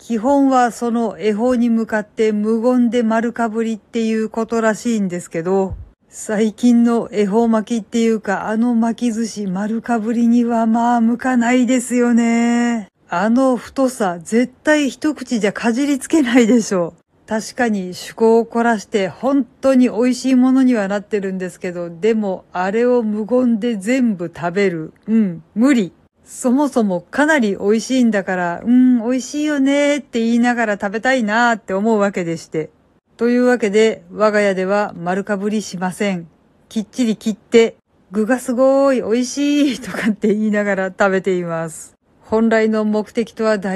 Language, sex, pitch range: Japanese, female, 200-240 Hz